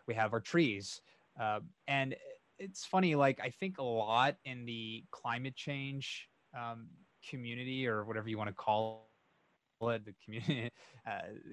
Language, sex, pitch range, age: English, male, 115-150 Hz, 20-39